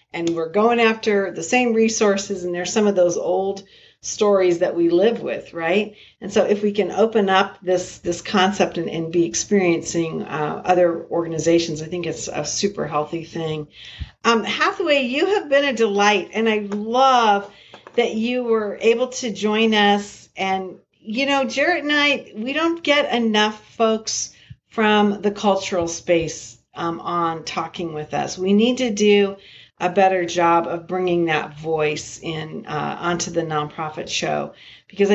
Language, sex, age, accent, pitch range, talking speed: English, female, 50-69, American, 170-225 Hz, 165 wpm